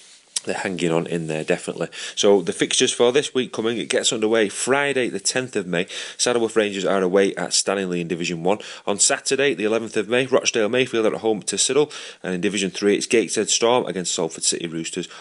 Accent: British